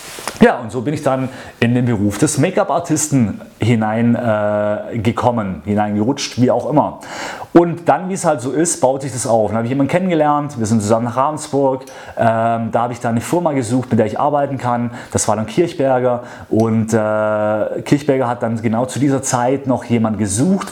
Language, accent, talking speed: German, German, 195 wpm